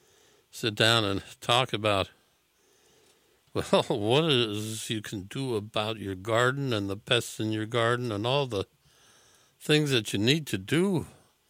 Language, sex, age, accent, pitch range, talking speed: English, male, 60-79, American, 105-130 Hz, 155 wpm